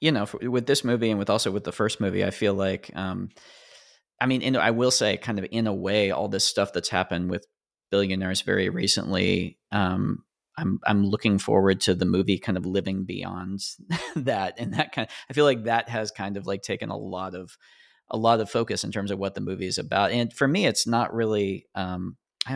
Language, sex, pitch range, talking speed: English, male, 90-110 Hz, 225 wpm